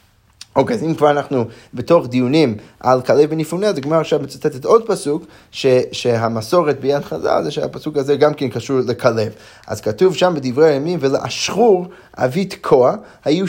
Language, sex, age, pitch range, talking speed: Hebrew, male, 30-49, 125-180 Hz, 165 wpm